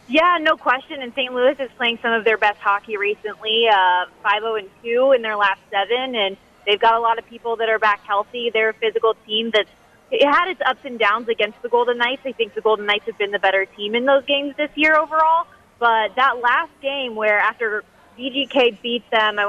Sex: female